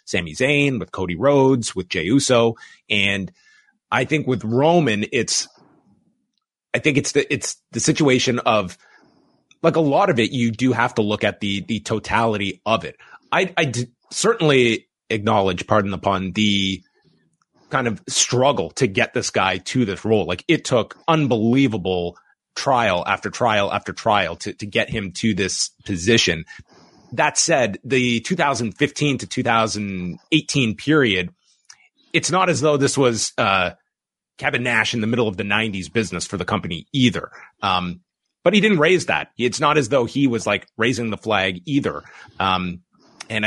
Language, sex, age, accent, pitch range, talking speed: English, male, 30-49, American, 100-135 Hz, 165 wpm